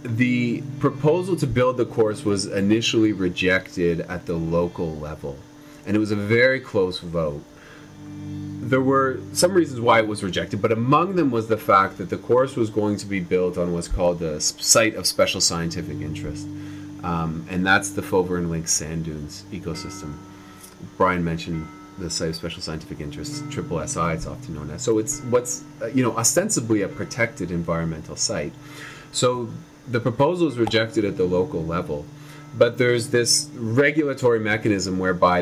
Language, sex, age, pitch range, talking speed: English, male, 30-49, 90-140 Hz, 170 wpm